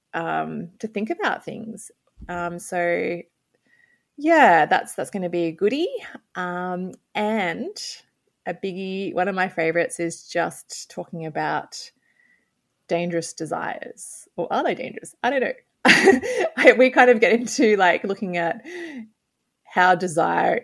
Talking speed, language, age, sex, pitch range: 135 wpm, English, 20-39, female, 160-210 Hz